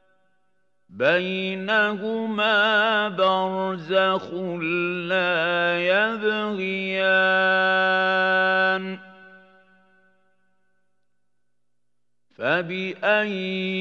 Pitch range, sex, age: 185-210 Hz, male, 50-69